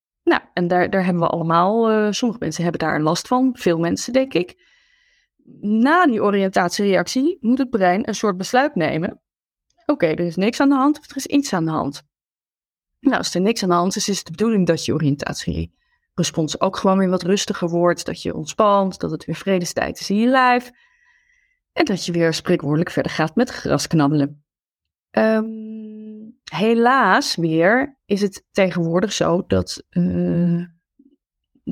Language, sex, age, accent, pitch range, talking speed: Dutch, female, 20-39, Dutch, 165-230 Hz, 180 wpm